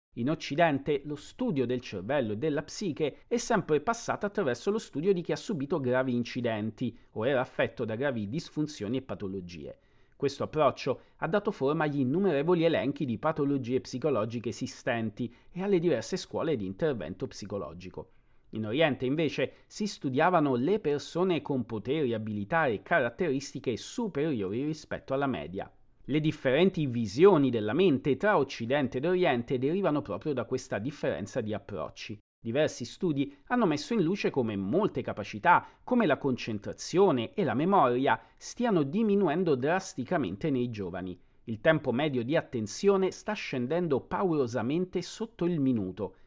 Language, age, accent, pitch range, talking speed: Italian, 40-59, native, 120-170 Hz, 145 wpm